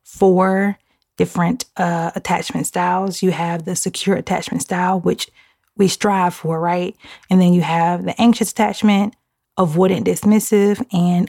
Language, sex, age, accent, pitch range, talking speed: English, female, 30-49, American, 175-205 Hz, 140 wpm